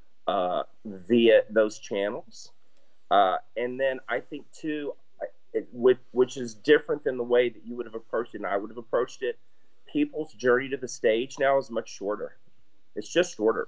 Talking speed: 190 wpm